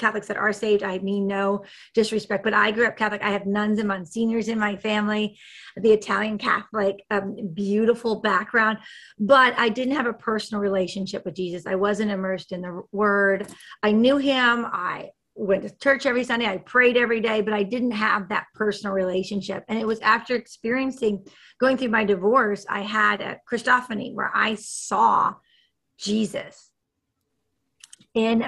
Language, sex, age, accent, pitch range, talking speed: English, female, 30-49, American, 190-225 Hz, 170 wpm